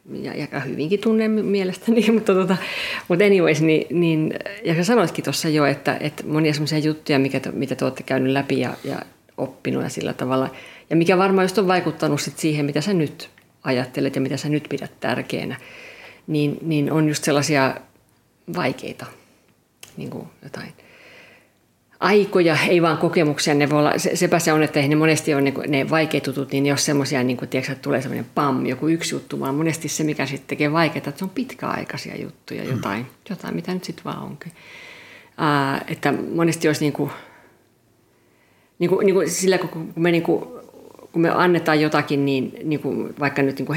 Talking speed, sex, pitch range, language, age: 175 wpm, female, 140-170 Hz, Finnish, 50-69